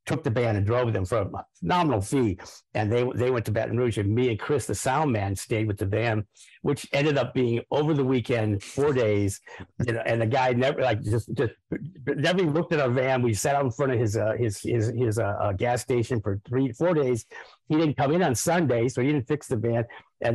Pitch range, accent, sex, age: 115-145 Hz, American, male, 50-69